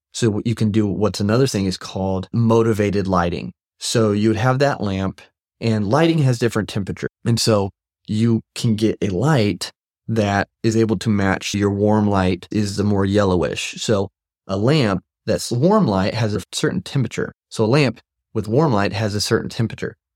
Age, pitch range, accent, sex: 30-49, 95-115 Hz, American, male